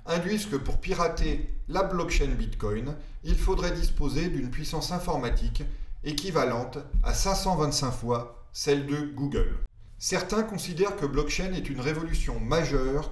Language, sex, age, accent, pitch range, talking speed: French, male, 40-59, French, 120-170 Hz, 130 wpm